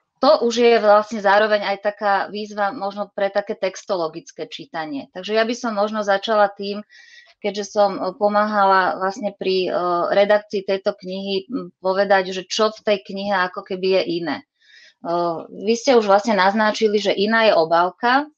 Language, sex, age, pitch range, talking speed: Slovak, female, 20-39, 185-210 Hz, 160 wpm